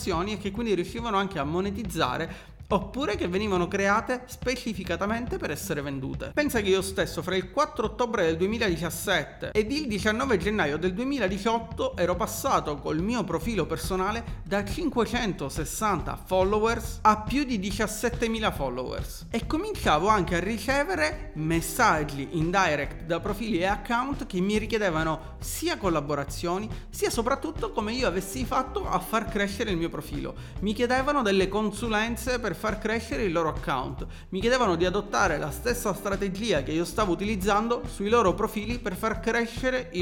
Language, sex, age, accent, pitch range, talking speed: Italian, male, 30-49, native, 170-230 Hz, 155 wpm